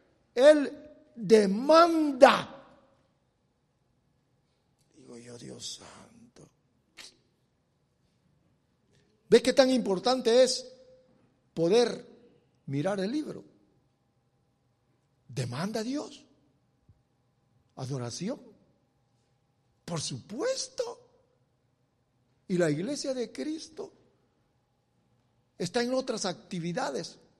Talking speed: 65 wpm